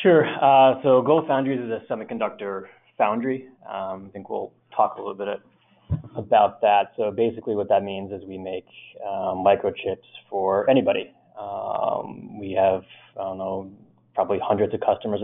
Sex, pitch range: male, 100-115 Hz